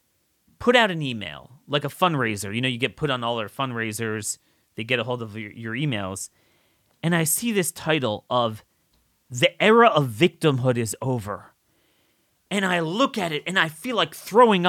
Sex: male